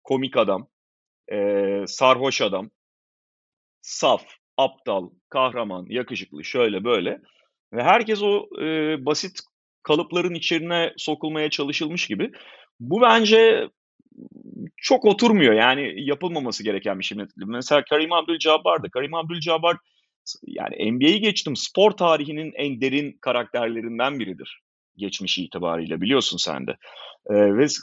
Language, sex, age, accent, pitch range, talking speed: Turkish, male, 40-59, native, 120-155 Hz, 110 wpm